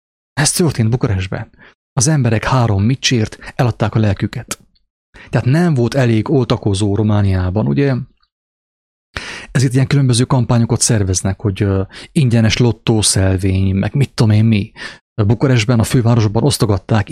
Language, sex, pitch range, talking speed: English, male, 105-130 Hz, 125 wpm